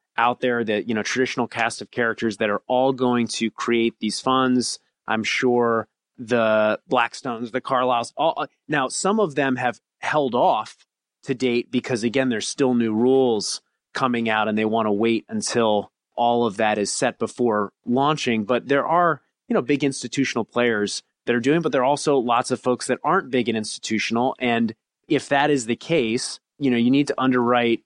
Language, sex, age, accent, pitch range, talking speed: English, male, 30-49, American, 115-140 Hz, 190 wpm